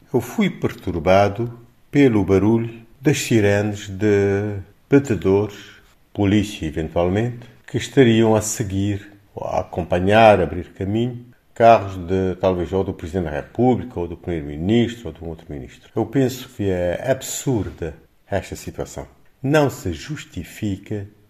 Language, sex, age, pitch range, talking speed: Portuguese, male, 50-69, 90-115 Hz, 125 wpm